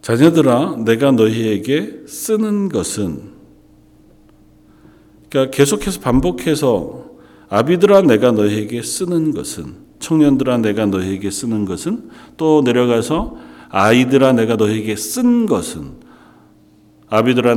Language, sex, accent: Korean, male, native